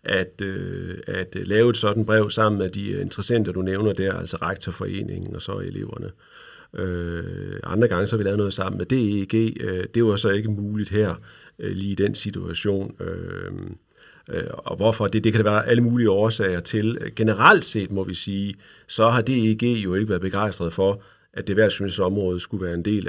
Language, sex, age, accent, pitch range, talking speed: Danish, male, 40-59, native, 95-115 Hz, 195 wpm